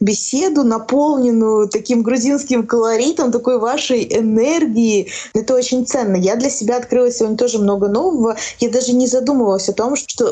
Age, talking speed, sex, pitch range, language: 20-39, 150 wpm, female, 205-255 Hz, Russian